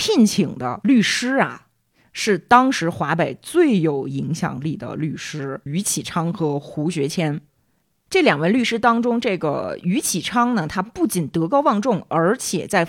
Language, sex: Chinese, female